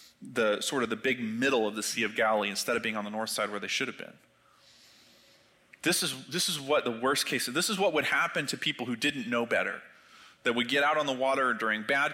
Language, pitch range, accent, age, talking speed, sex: English, 120-150 Hz, American, 30-49, 250 wpm, male